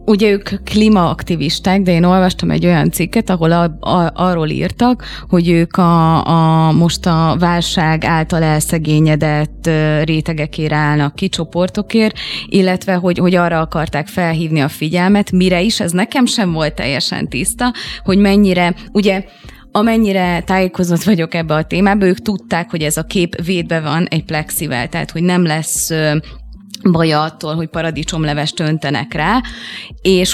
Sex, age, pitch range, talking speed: female, 20-39, 155-195 Hz, 145 wpm